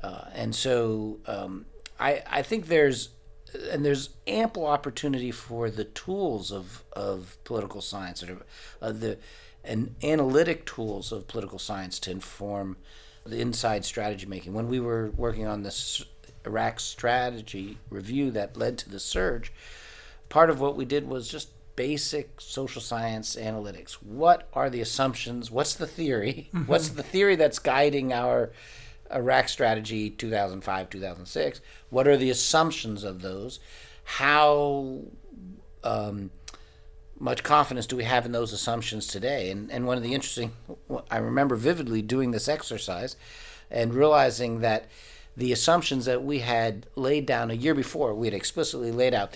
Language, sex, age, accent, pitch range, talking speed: English, male, 50-69, American, 105-135 Hz, 150 wpm